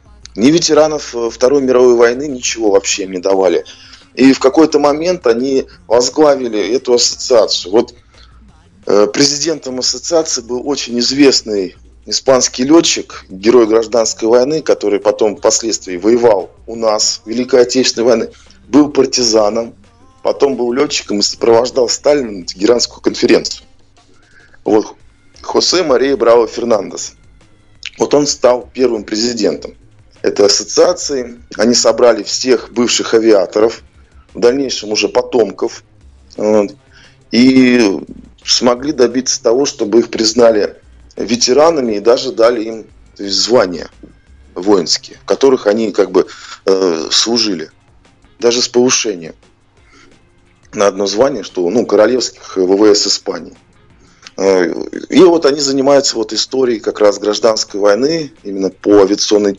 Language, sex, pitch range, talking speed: Russian, male, 100-135 Hz, 115 wpm